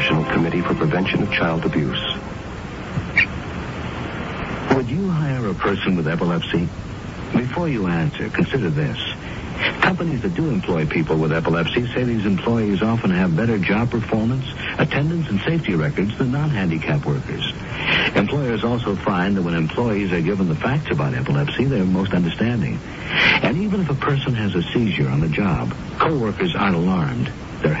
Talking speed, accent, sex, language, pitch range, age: 155 wpm, American, male, English, 90-135 Hz, 60-79